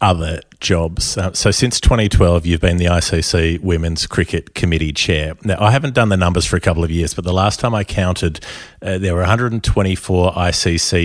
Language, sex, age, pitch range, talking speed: English, male, 30-49, 85-95 Hz, 195 wpm